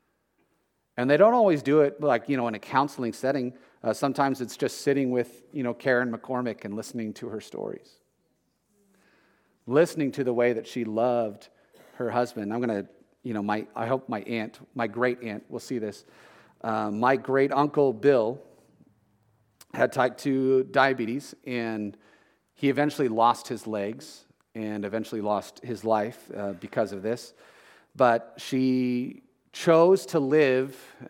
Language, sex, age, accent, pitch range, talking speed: English, male, 40-59, American, 115-135 Hz, 160 wpm